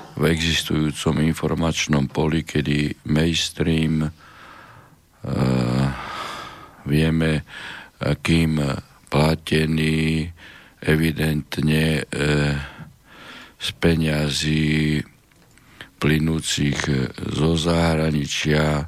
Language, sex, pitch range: Slovak, male, 70-80 Hz